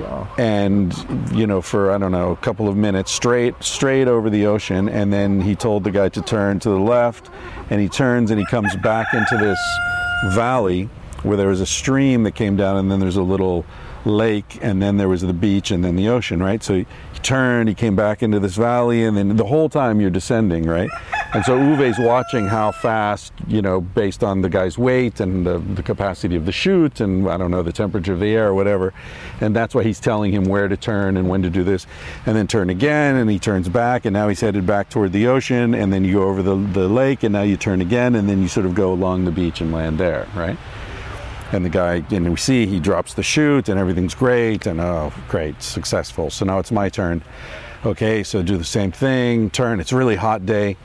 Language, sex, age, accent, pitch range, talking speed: English, male, 50-69, American, 95-115 Hz, 235 wpm